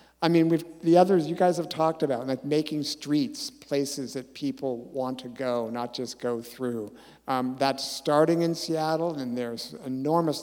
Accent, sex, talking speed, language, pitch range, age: American, male, 175 wpm, English, 130-155 Hz, 50-69